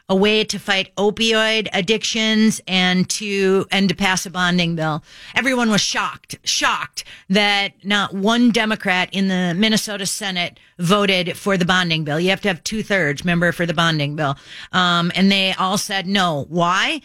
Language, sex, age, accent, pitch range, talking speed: English, female, 40-59, American, 185-230 Hz, 170 wpm